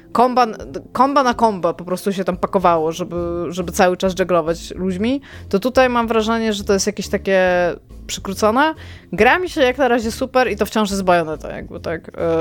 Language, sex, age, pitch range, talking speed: Polish, female, 20-39, 180-230 Hz, 200 wpm